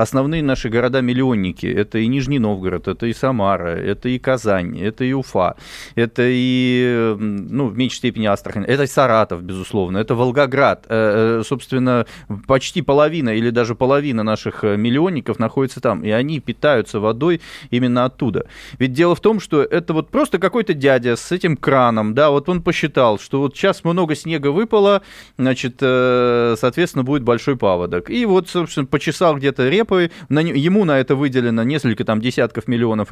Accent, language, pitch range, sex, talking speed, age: native, Russian, 120-170 Hz, male, 160 wpm, 20-39